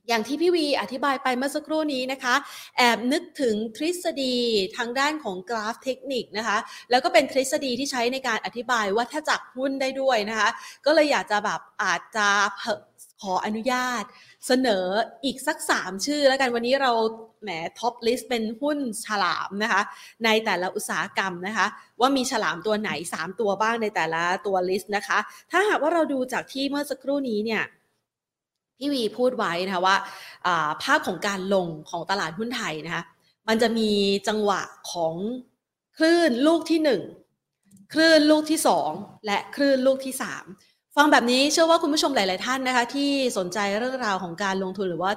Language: Thai